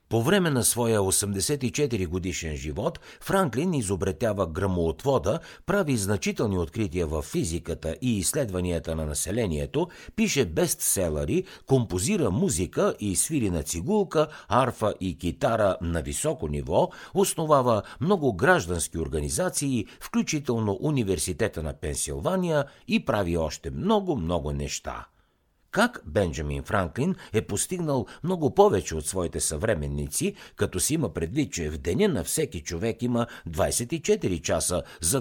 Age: 60-79